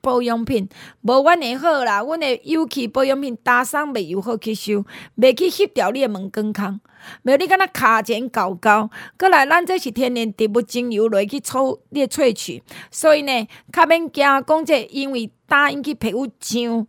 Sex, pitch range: female, 220-290 Hz